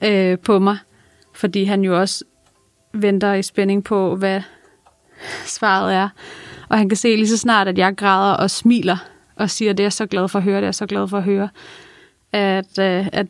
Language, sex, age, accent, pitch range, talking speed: Danish, female, 30-49, native, 195-225 Hz, 190 wpm